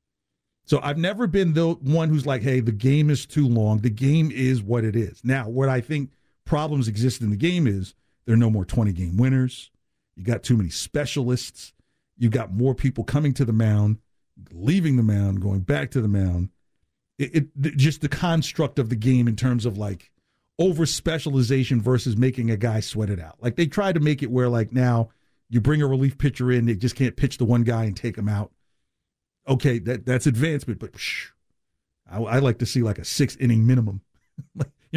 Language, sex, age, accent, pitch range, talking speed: English, male, 50-69, American, 110-145 Hz, 205 wpm